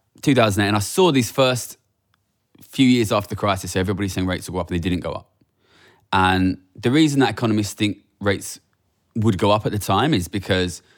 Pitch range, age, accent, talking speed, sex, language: 90-115 Hz, 20-39, British, 210 wpm, male, English